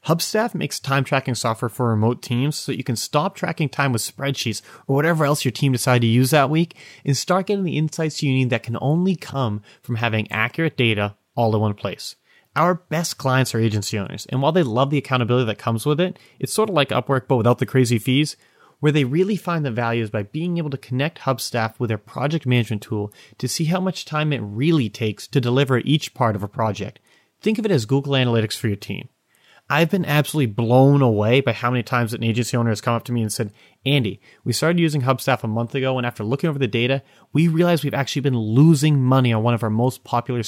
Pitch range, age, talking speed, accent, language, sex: 115-150 Hz, 30-49, 235 wpm, American, English, male